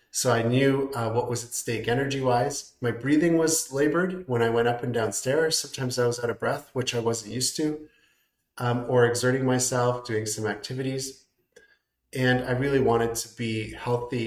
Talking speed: 185 wpm